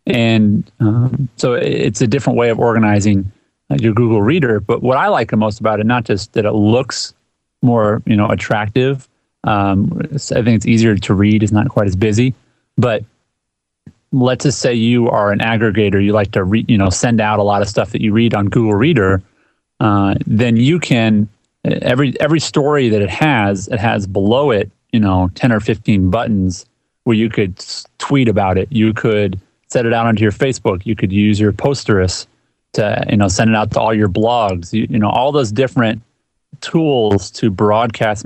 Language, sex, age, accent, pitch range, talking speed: English, male, 30-49, American, 105-120 Hz, 195 wpm